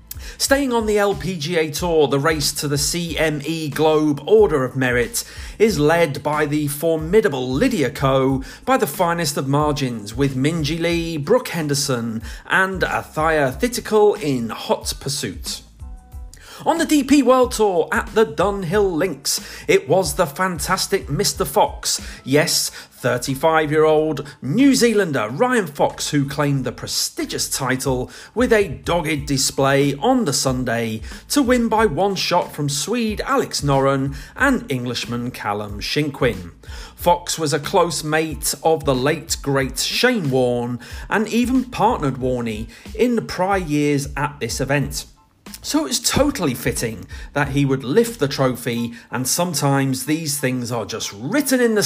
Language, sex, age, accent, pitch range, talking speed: English, male, 40-59, British, 130-190 Hz, 145 wpm